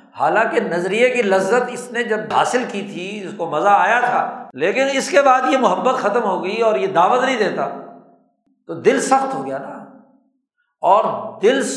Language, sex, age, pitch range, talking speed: Urdu, male, 60-79, 175-240 Hz, 190 wpm